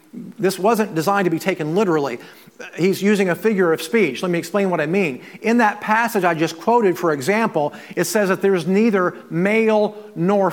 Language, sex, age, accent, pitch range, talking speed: English, male, 40-59, American, 180-220 Hz, 195 wpm